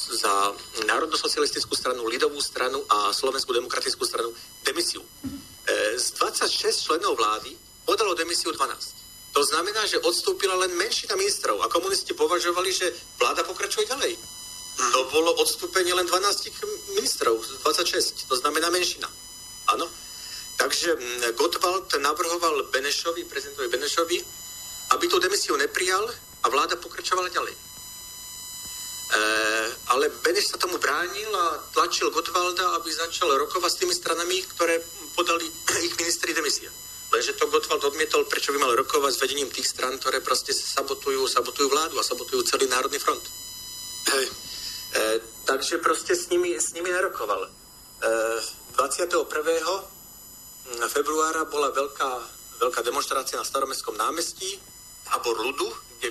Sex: male